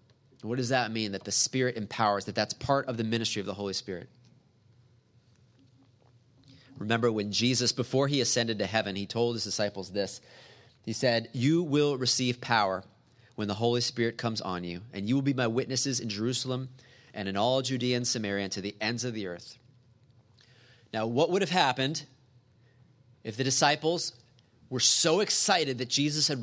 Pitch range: 115-140 Hz